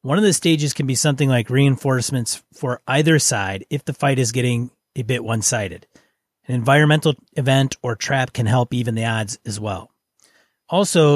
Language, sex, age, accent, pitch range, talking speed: English, male, 30-49, American, 125-150 Hz, 175 wpm